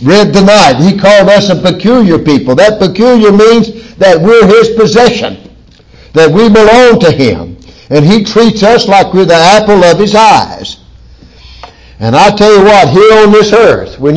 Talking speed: 170 wpm